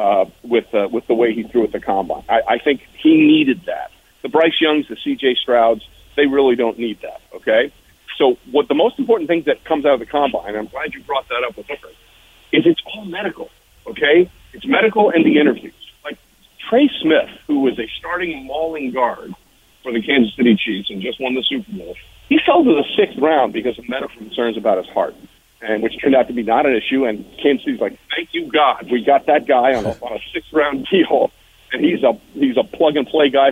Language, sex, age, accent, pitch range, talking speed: English, male, 40-59, American, 120-200 Hz, 225 wpm